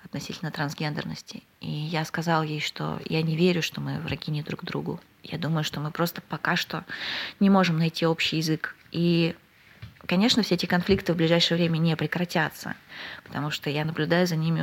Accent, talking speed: native, 180 wpm